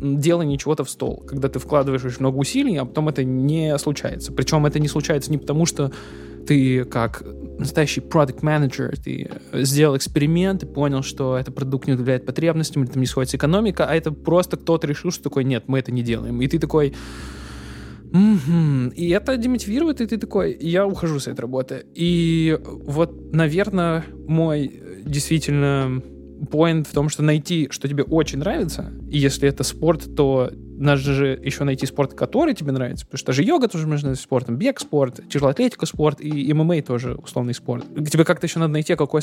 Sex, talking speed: male, 180 wpm